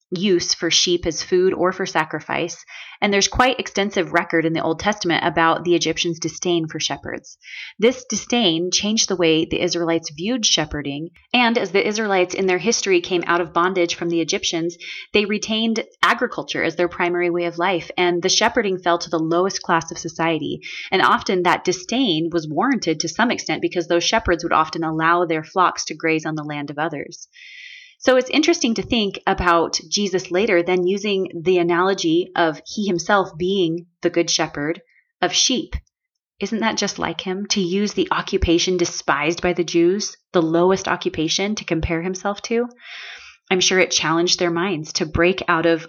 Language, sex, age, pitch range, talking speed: English, female, 20-39, 170-205 Hz, 185 wpm